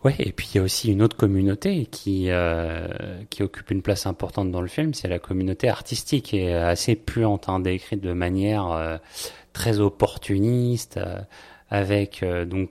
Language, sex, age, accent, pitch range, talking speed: French, male, 30-49, French, 90-110 Hz, 180 wpm